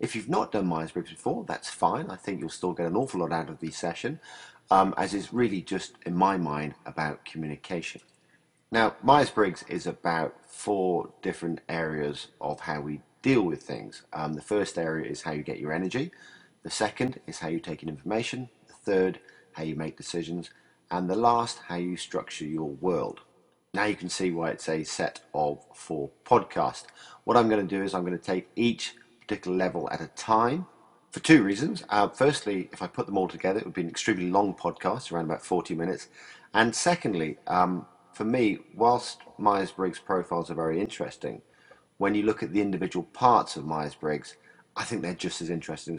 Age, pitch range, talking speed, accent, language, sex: 40-59, 80-100 Hz, 195 wpm, British, English, male